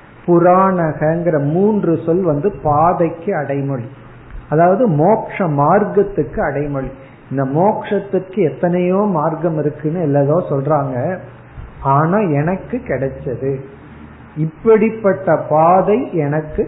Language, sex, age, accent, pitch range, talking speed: Tamil, male, 50-69, native, 145-195 Hz, 80 wpm